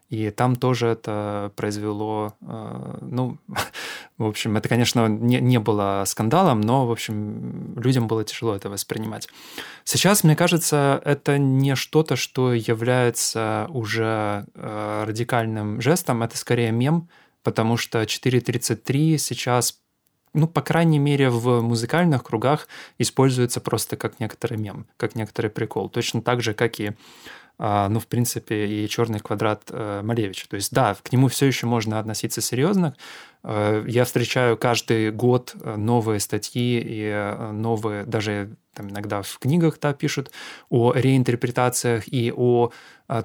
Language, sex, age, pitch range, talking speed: Russian, male, 20-39, 110-130 Hz, 130 wpm